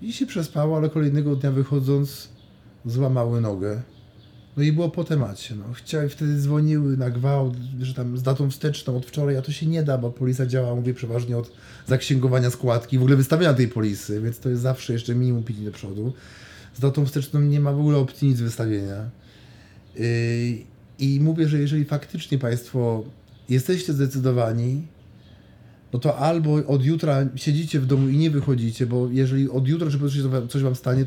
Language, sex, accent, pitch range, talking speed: Polish, male, native, 120-145 Hz, 180 wpm